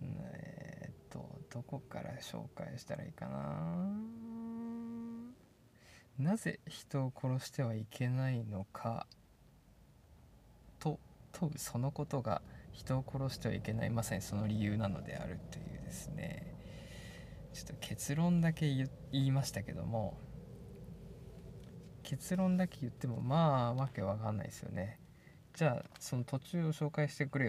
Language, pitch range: Japanese, 110-150 Hz